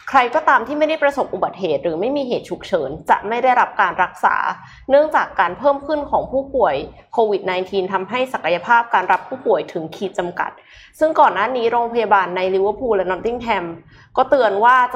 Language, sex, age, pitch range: Thai, female, 20-39, 195-285 Hz